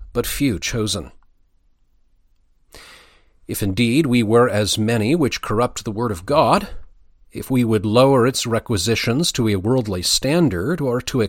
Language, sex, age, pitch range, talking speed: English, male, 40-59, 90-135 Hz, 150 wpm